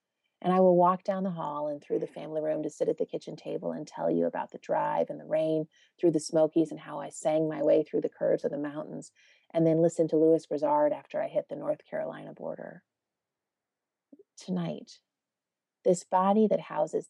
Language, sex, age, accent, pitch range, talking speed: English, female, 30-49, American, 155-220 Hz, 210 wpm